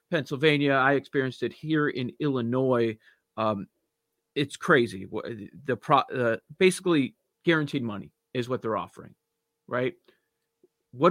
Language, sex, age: English, male, 40-59